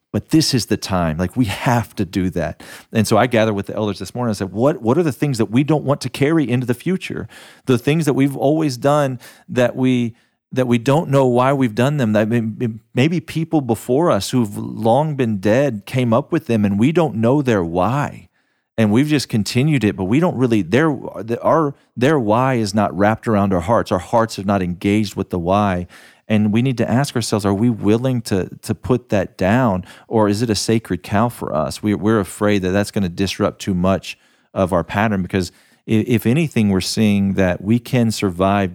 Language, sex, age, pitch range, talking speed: English, male, 40-59, 95-120 Hz, 220 wpm